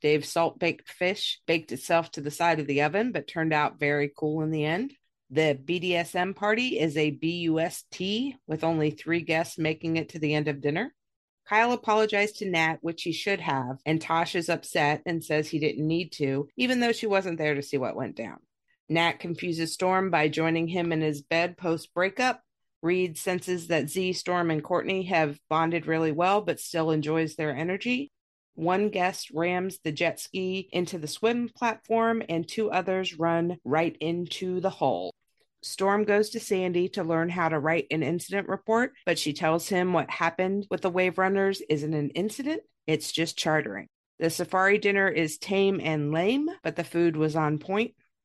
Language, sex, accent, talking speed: English, female, American, 185 wpm